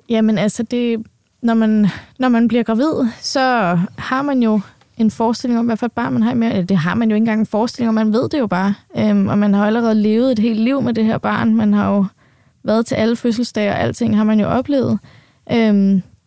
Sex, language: female, Danish